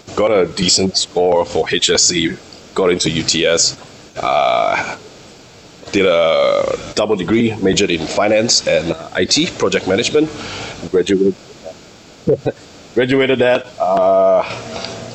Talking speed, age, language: 100 wpm, 20-39, English